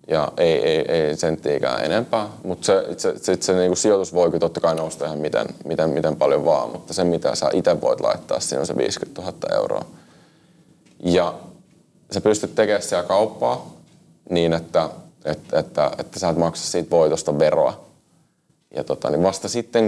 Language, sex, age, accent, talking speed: Finnish, male, 30-49, native, 180 wpm